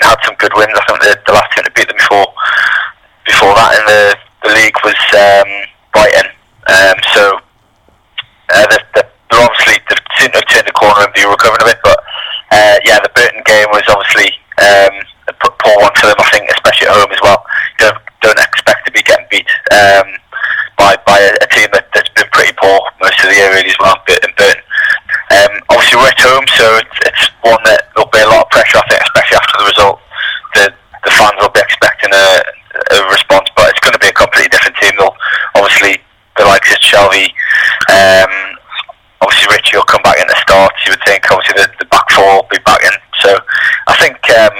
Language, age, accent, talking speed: English, 20-39, British, 215 wpm